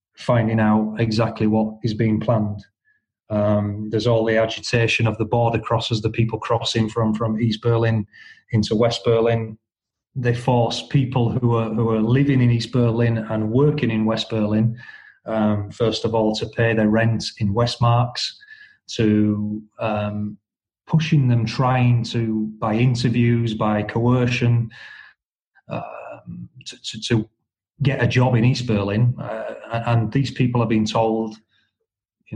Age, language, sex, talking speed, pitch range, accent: 30-49, English, male, 145 wpm, 110-120 Hz, British